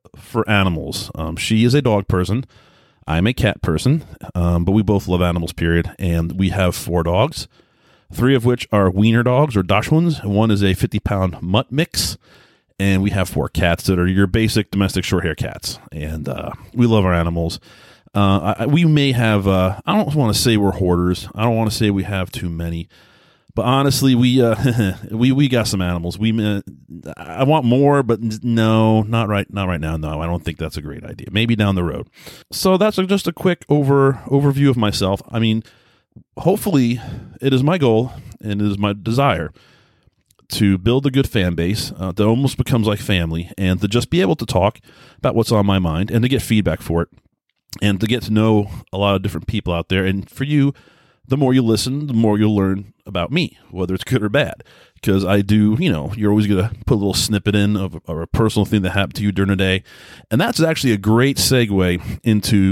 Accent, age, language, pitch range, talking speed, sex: American, 30-49, English, 95-120 Hz, 215 wpm, male